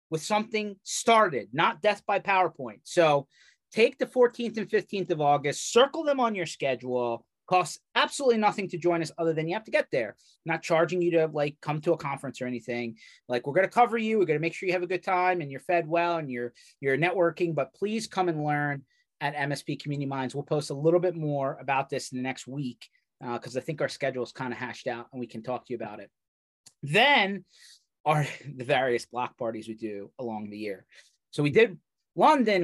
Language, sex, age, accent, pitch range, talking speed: English, male, 30-49, American, 130-185 Hz, 225 wpm